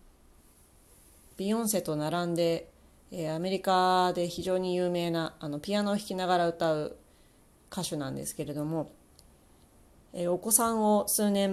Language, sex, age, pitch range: Japanese, female, 30-49, 120-200 Hz